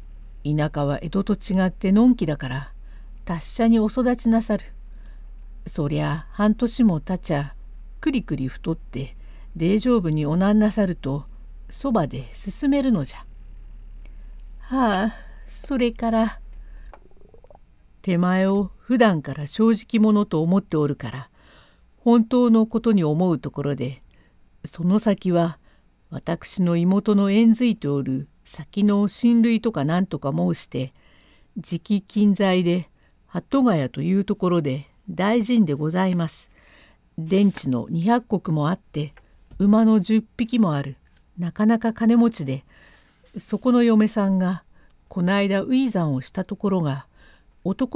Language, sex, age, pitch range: Japanese, female, 50-69, 145-220 Hz